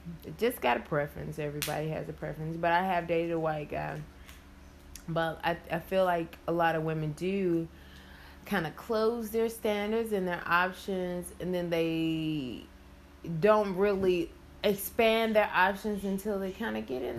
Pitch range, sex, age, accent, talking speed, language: 150-215 Hz, female, 20-39, American, 165 wpm, English